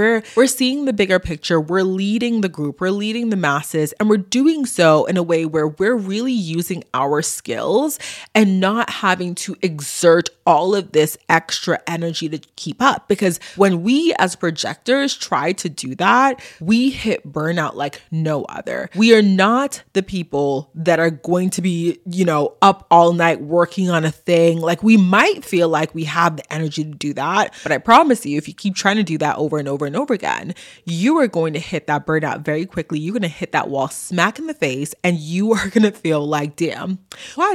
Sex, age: female, 20-39